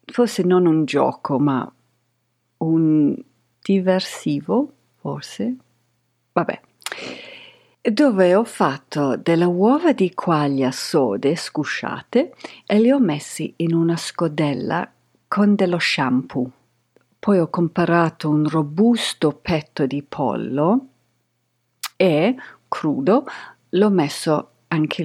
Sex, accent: female, native